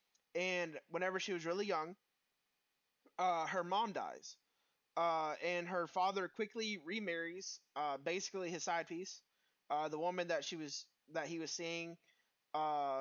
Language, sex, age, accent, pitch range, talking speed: English, male, 20-39, American, 165-195 Hz, 150 wpm